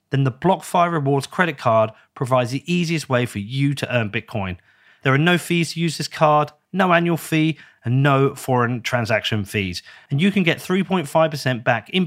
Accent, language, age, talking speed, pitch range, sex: British, English, 30-49, 190 wpm, 120-165 Hz, male